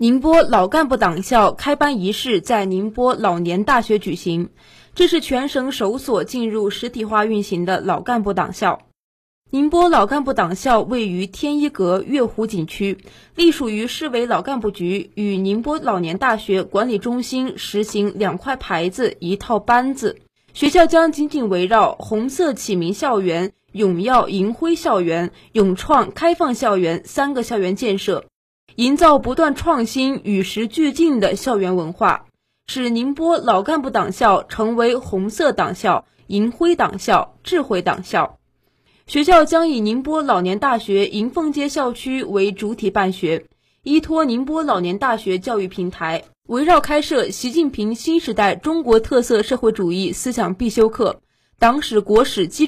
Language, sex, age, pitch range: Chinese, female, 20-39, 195-280 Hz